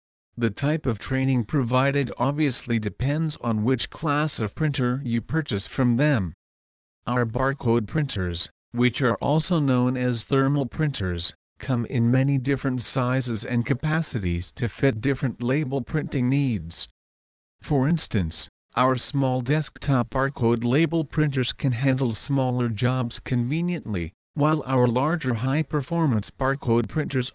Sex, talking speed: male, 125 wpm